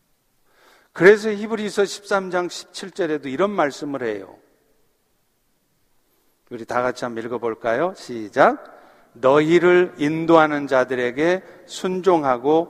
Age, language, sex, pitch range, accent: 50-69, Korean, male, 135-195 Hz, native